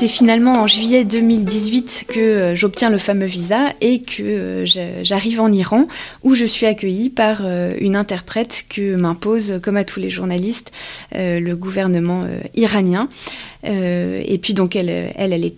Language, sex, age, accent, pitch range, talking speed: French, female, 20-39, French, 190-225 Hz, 150 wpm